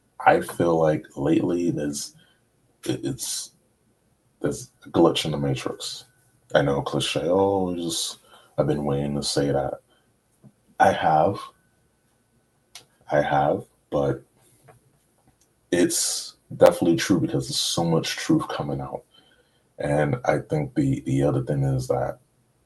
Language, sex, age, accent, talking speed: English, male, 30-49, American, 125 wpm